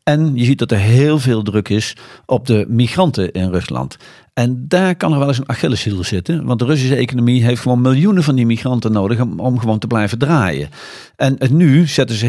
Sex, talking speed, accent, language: male, 220 wpm, Dutch, Dutch